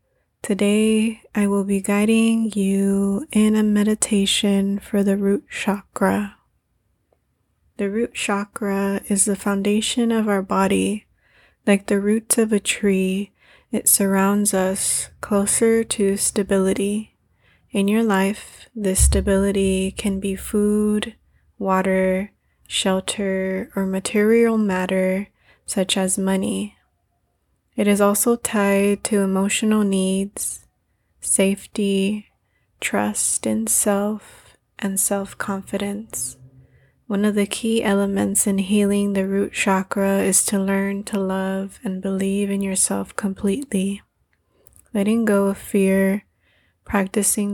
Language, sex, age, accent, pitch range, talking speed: English, female, 20-39, American, 195-205 Hz, 110 wpm